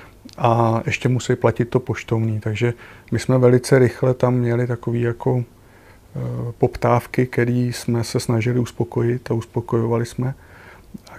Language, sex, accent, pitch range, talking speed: Czech, male, native, 115-125 Hz, 135 wpm